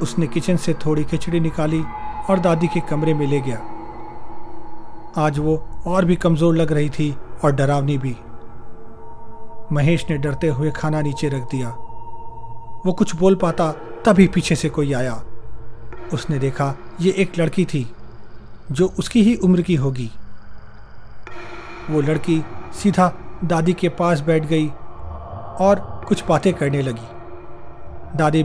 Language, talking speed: Hindi, 140 wpm